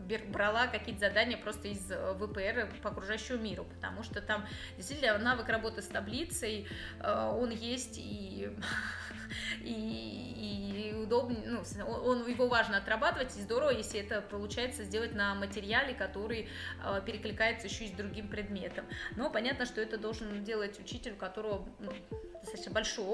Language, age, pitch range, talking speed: Russian, 20-39, 205-245 Hz, 145 wpm